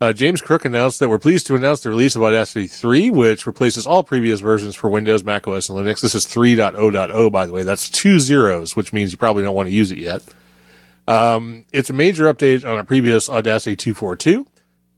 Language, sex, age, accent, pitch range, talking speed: English, male, 30-49, American, 100-125 Hz, 215 wpm